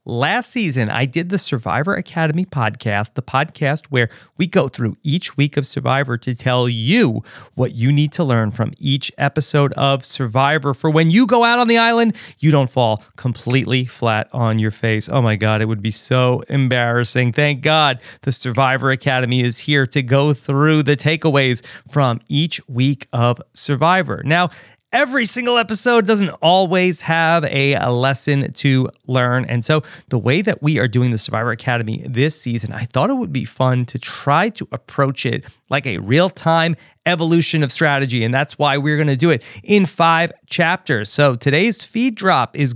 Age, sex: 40-59, male